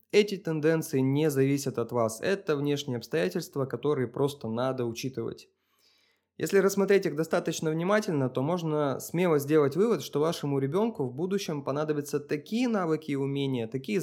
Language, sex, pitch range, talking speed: Russian, male, 130-170 Hz, 145 wpm